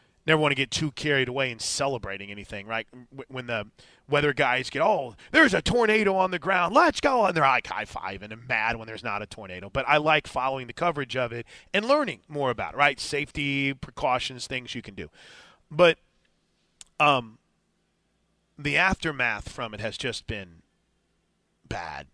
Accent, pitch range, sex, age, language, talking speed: American, 125-165 Hz, male, 30-49, English, 180 wpm